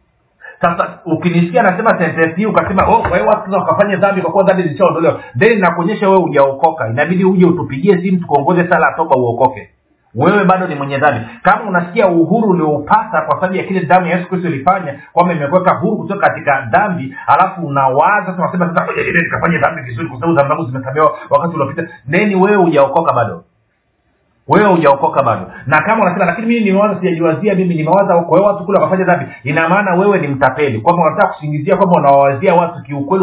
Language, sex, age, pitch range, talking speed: Swahili, male, 50-69, 140-185 Hz, 200 wpm